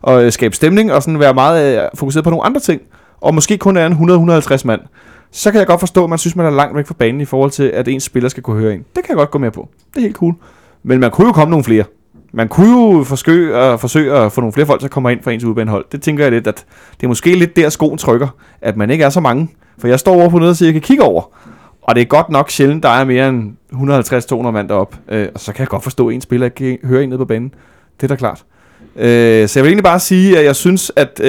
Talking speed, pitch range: 290 wpm, 120-160 Hz